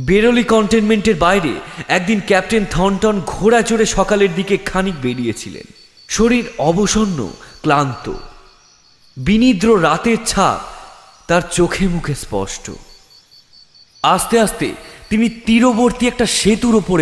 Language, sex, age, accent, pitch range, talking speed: Bengali, male, 30-49, native, 170-220 Hz, 100 wpm